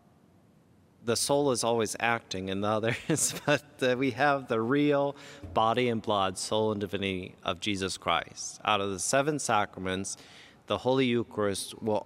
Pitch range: 110-145 Hz